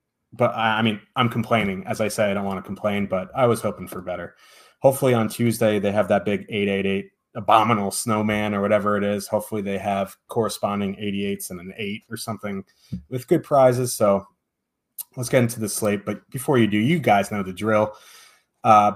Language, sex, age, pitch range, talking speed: English, male, 30-49, 105-130 Hz, 195 wpm